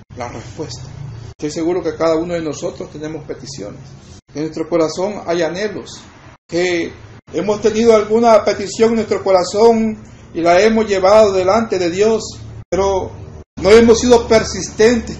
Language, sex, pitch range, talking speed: Spanish, male, 145-205 Hz, 140 wpm